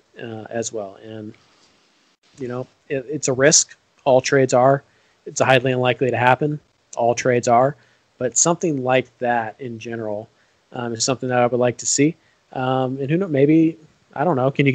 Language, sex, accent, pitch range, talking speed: English, male, American, 120-140 Hz, 185 wpm